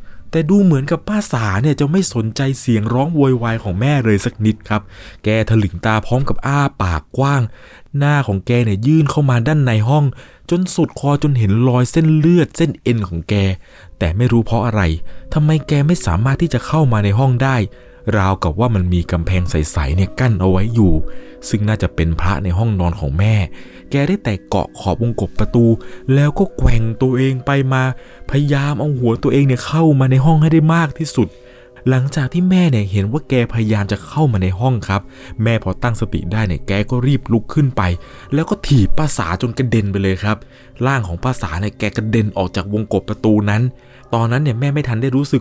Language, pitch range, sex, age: Thai, 95-135 Hz, male, 20-39